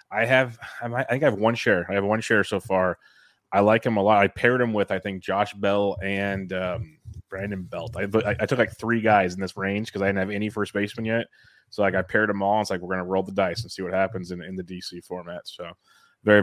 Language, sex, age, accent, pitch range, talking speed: English, male, 20-39, American, 95-115 Hz, 265 wpm